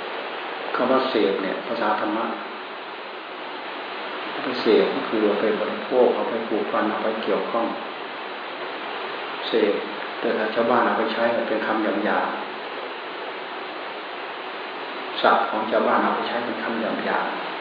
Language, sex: Thai, male